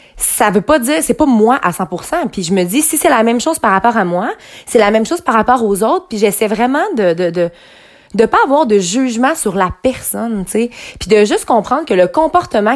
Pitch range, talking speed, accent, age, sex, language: 210-275 Hz, 245 wpm, Canadian, 20-39, female, French